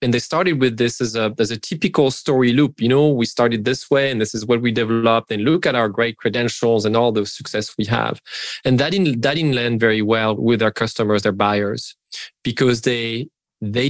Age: 20-39